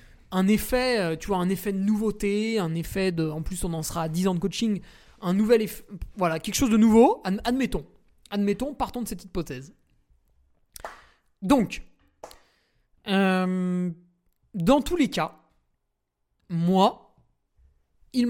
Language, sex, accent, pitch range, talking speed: French, male, French, 160-225 Hz, 140 wpm